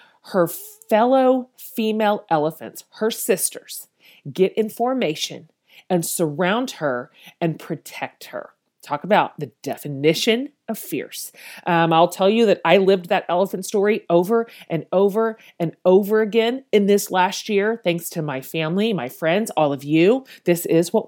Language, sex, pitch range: English, female, 165-225 Hz